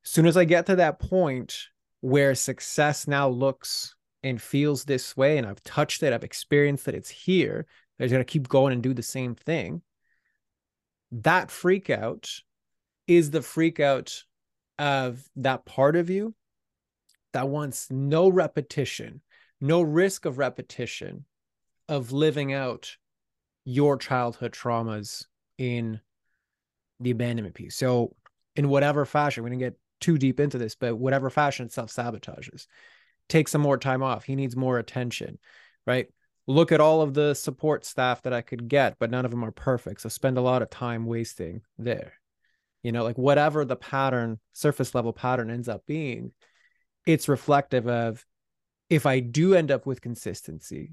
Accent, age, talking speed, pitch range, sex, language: American, 30-49, 165 wpm, 120-150 Hz, male, English